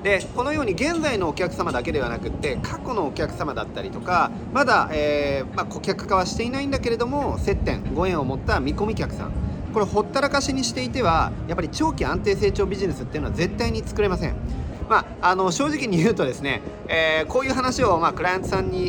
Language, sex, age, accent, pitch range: Japanese, male, 40-59, native, 150-245 Hz